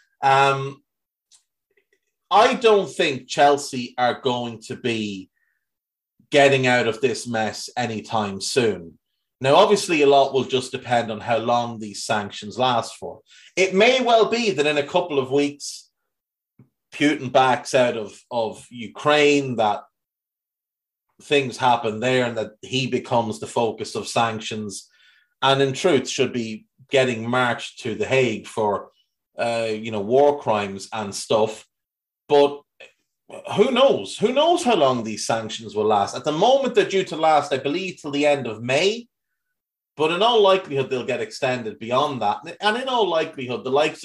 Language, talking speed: English, 160 wpm